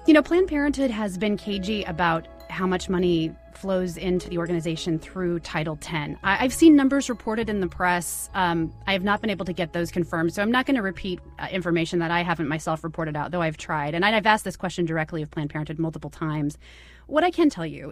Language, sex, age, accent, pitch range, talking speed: English, female, 30-49, American, 170-210 Hz, 225 wpm